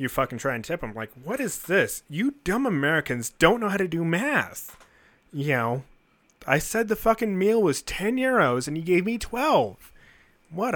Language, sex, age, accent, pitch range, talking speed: English, male, 30-49, American, 130-195 Hz, 195 wpm